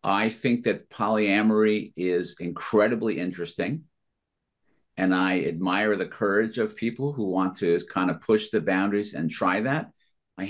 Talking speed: 150 wpm